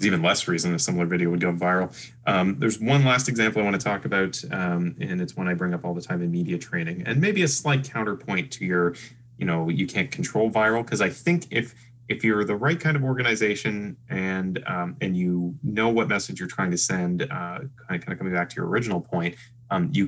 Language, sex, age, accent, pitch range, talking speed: English, male, 20-39, American, 90-130 Hz, 235 wpm